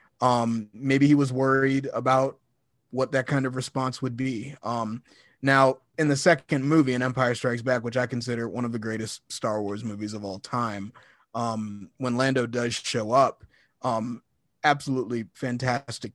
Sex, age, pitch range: male, 30-49, 120-135 Hz